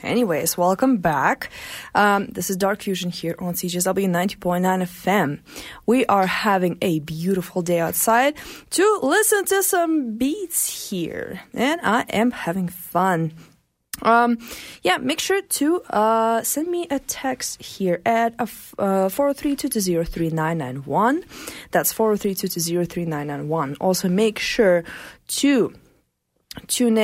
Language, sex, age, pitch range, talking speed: English, female, 20-39, 180-245 Hz, 120 wpm